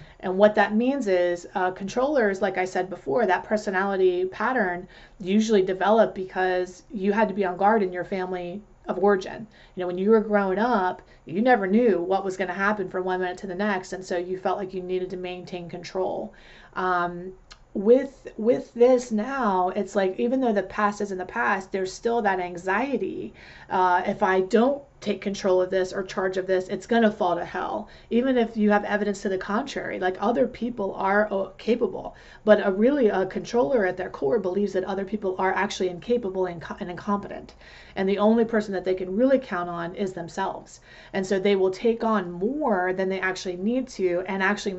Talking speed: 205 wpm